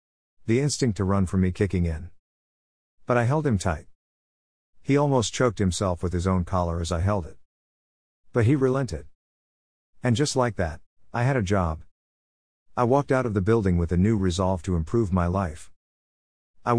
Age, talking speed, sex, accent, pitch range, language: 50-69, 180 wpm, male, American, 85-115 Hz, English